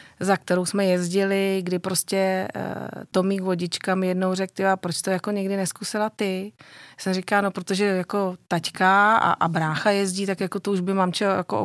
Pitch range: 175-195 Hz